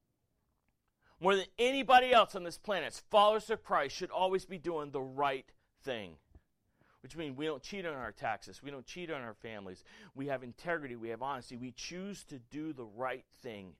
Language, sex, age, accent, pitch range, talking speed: English, male, 40-59, American, 100-140 Hz, 190 wpm